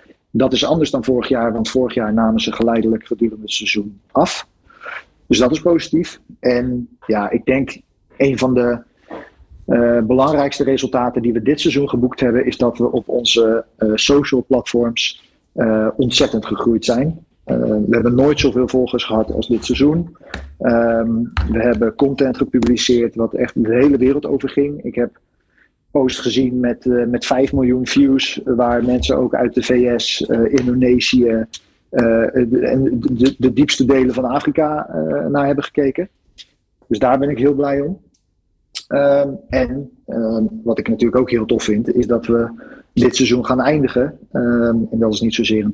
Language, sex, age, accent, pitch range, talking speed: Dutch, male, 40-59, Dutch, 115-135 Hz, 175 wpm